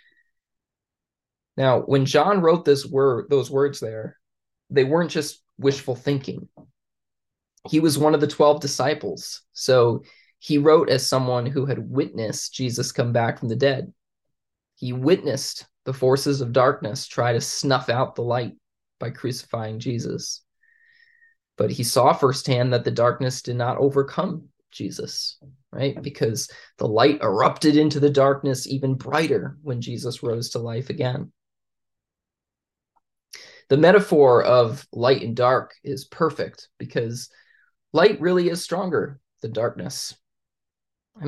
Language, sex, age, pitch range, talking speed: English, male, 20-39, 125-150 Hz, 135 wpm